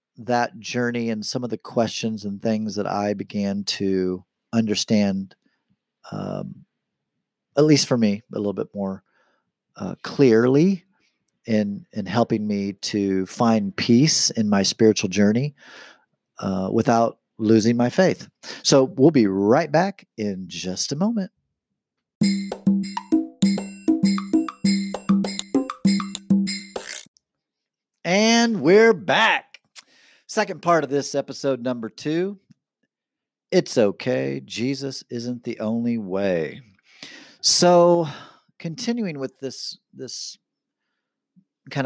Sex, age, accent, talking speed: male, 40-59, American, 105 wpm